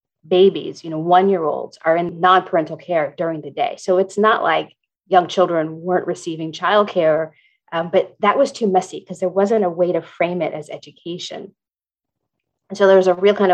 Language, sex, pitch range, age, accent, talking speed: English, female, 170-205 Hz, 30-49, American, 185 wpm